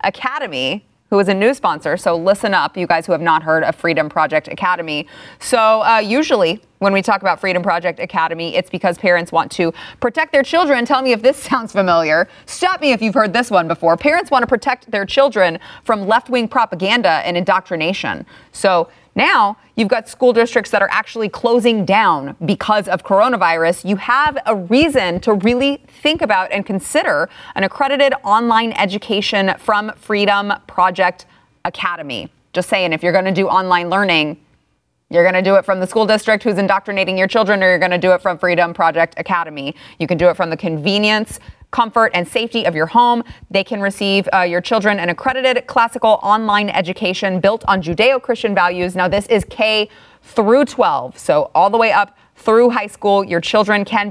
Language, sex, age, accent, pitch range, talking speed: English, female, 30-49, American, 180-230 Hz, 190 wpm